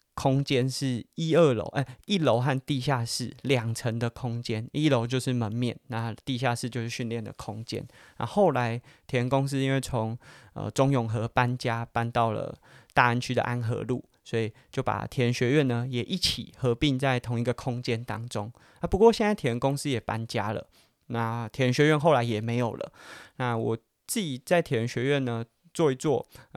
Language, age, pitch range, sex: Chinese, 20-39, 115-135 Hz, male